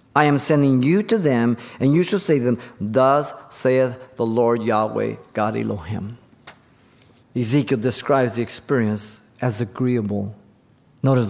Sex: male